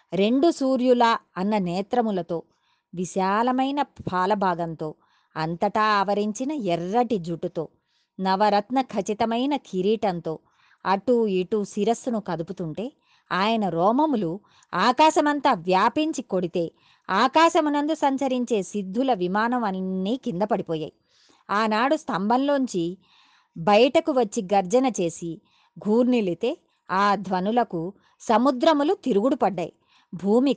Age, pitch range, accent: 20-39, 185-250 Hz, native